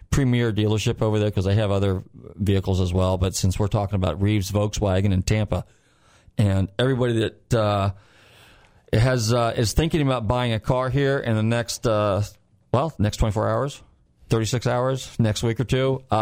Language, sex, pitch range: English, male, 105-135 Hz